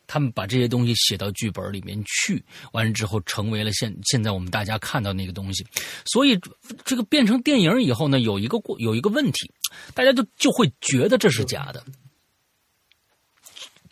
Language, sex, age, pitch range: Chinese, male, 30-49, 105-165 Hz